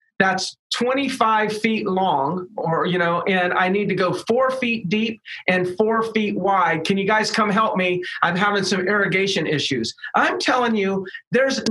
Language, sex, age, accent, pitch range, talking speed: English, male, 40-59, American, 190-235 Hz, 175 wpm